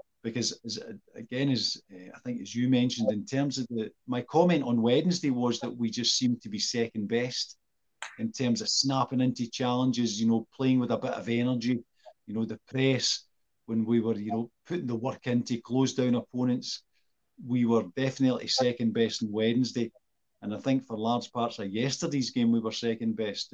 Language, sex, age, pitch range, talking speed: English, male, 50-69, 110-130 Hz, 195 wpm